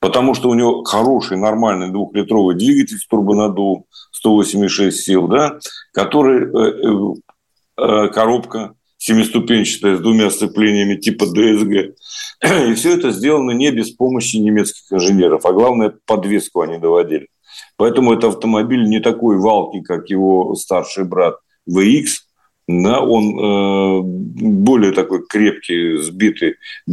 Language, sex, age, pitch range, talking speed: Russian, male, 50-69, 100-135 Hz, 115 wpm